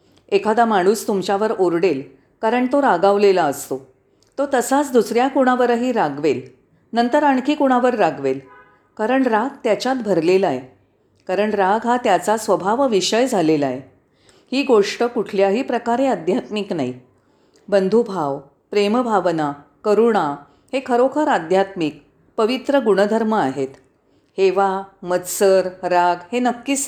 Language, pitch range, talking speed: Marathi, 175-250 Hz, 110 wpm